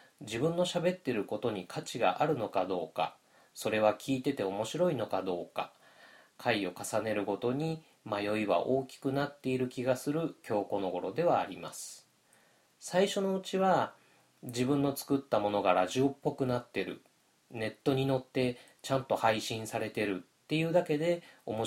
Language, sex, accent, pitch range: Japanese, male, native, 105-150 Hz